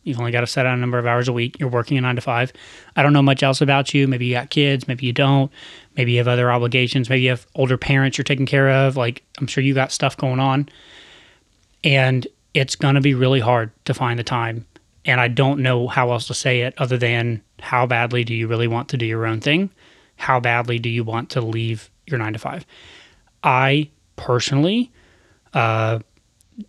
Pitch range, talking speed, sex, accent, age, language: 115-135 Hz, 225 wpm, male, American, 30-49, English